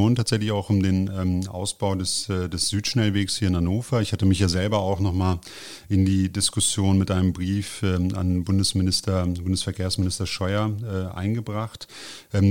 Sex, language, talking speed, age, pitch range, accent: male, German, 175 wpm, 30-49, 95-110 Hz, German